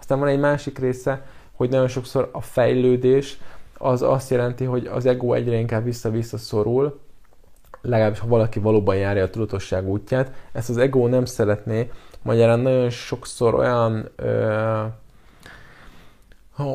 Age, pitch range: 20-39, 105-130 Hz